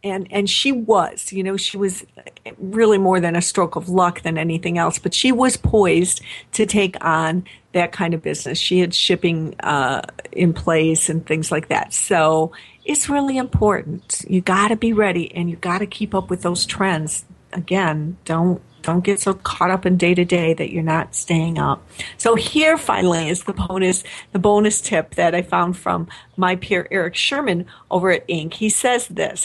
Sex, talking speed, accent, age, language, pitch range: female, 190 wpm, American, 50-69, English, 170-200 Hz